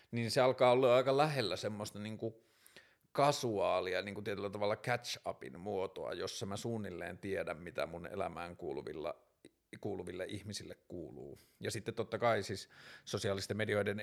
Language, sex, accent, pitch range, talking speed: Finnish, male, native, 95-115 Hz, 120 wpm